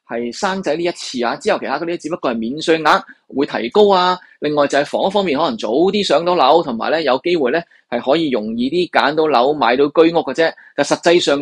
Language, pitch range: Chinese, 135-195 Hz